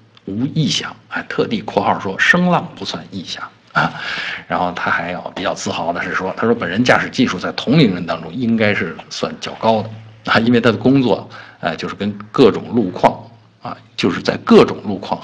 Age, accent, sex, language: 50-69, native, male, Chinese